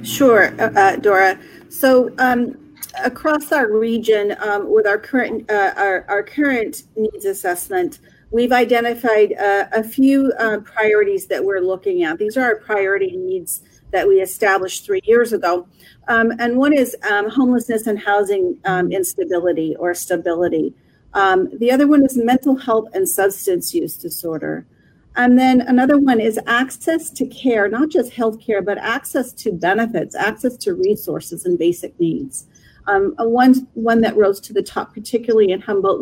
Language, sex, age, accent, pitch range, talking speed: English, female, 40-59, American, 195-265 Hz, 165 wpm